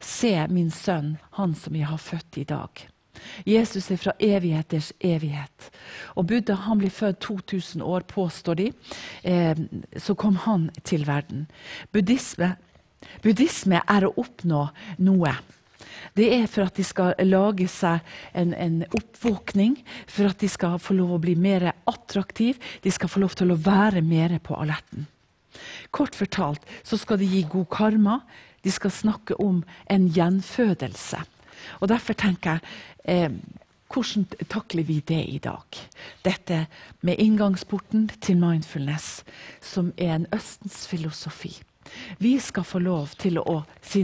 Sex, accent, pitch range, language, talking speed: female, Swedish, 165-205 Hz, English, 145 wpm